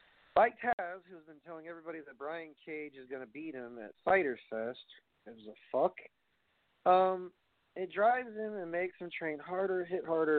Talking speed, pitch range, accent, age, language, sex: 180 wpm, 130-160 Hz, American, 40-59, English, male